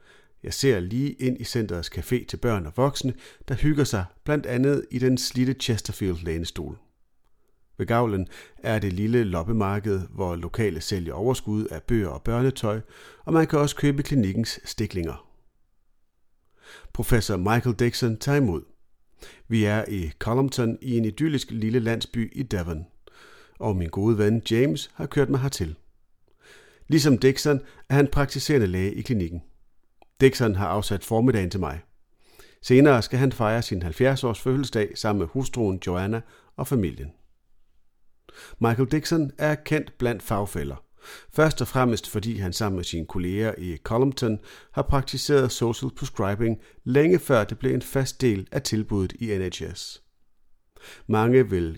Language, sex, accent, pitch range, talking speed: Danish, male, native, 95-130 Hz, 150 wpm